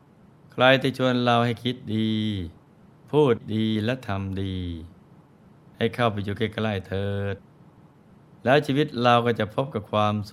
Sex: male